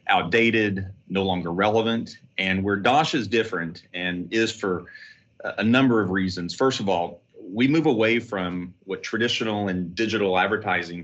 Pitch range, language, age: 90-105 Hz, English, 30-49